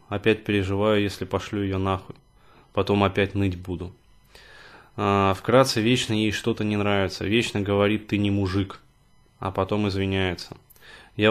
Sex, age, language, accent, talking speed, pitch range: male, 20-39, Russian, native, 135 wpm, 95-110 Hz